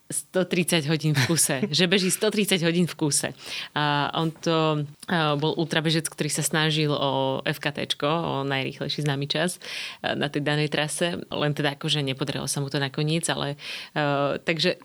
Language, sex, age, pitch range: Slovak, female, 30-49, 150-185 Hz